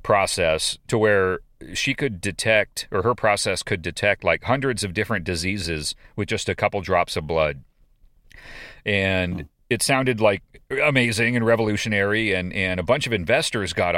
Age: 40-59